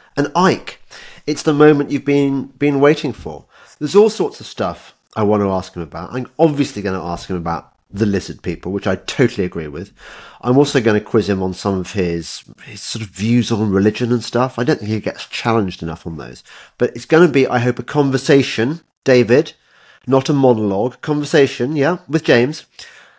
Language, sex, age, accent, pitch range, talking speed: English, male, 40-59, British, 95-135 Hz, 205 wpm